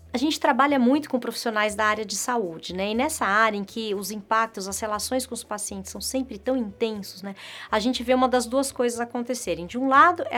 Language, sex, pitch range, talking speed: Portuguese, female, 215-265 Hz, 230 wpm